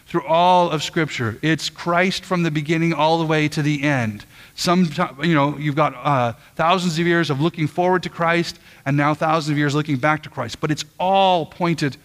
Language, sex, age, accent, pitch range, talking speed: English, male, 40-59, American, 145-185 Hz, 195 wpm